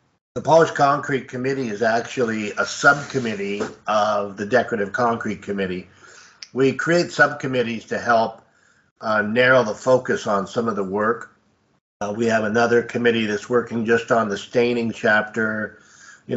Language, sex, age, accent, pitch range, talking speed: English, male, 50-69, American, 110-130 Hz, 145 wpm